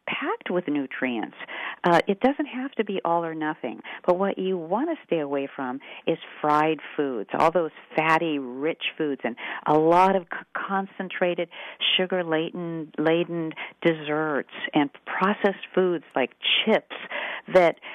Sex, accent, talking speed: female, American, 135 wpm